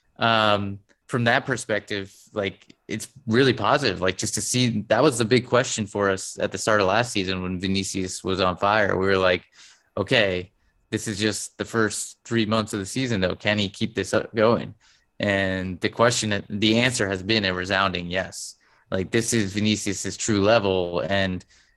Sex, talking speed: male, 185 wpm